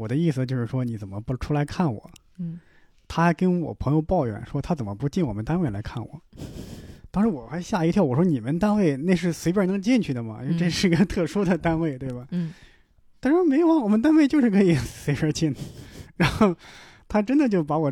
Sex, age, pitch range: male, 20-39, 130-180 Hz